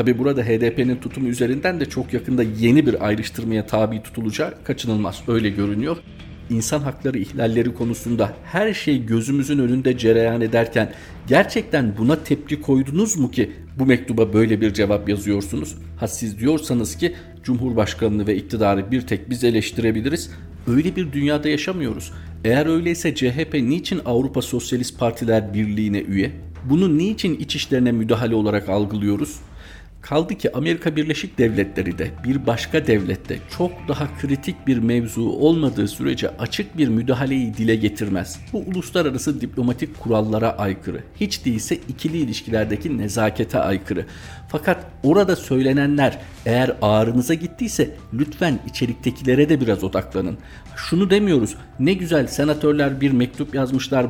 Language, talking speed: Turkish, 135 wpm